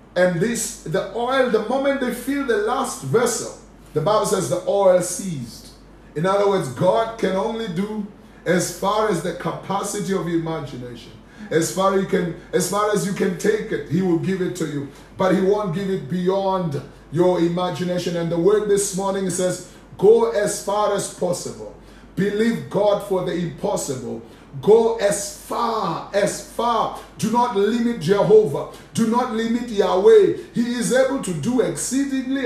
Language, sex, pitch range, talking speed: English, male, 165-210 Hz, 165 wpm